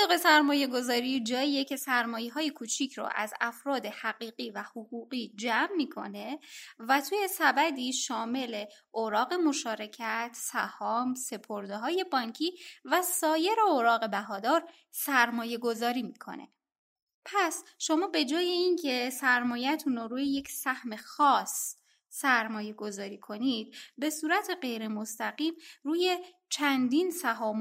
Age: 20-39